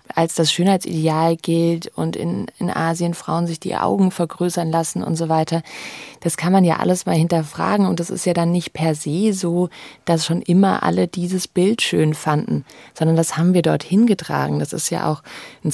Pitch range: 145-170 Hz